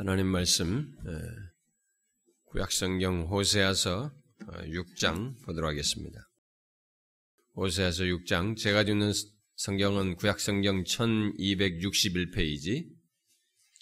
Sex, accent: male, native